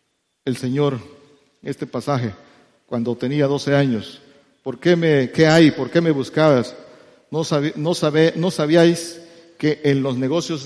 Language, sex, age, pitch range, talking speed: Spanish, male, 50-69, 135-165 Hz, 150 wpm